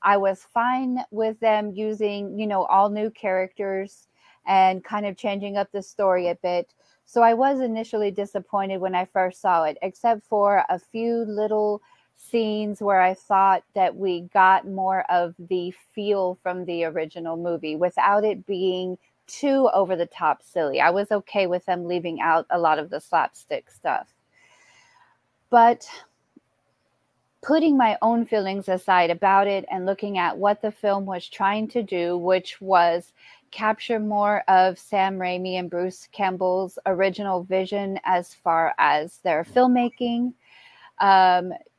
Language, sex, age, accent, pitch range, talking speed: English, female, 30-49, American, 185-215 Hz, 155 wpm